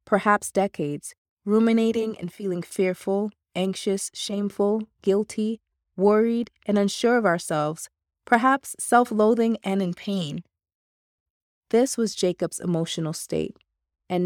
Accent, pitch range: American, 165-210 Hz